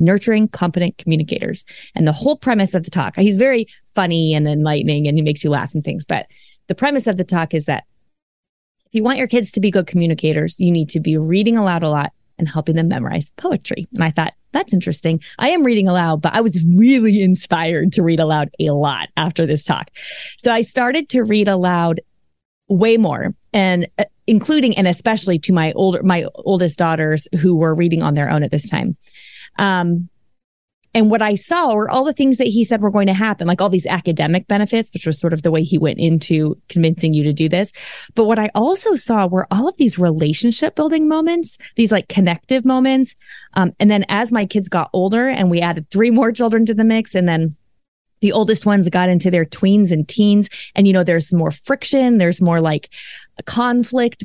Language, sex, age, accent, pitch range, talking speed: English, female, 30-49, American, 165-225 Hz, 210 wpm